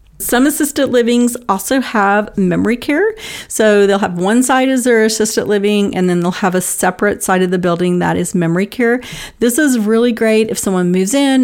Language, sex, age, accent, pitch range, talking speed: English, female, 40-59, American, 180-235 Hz, 200 wpm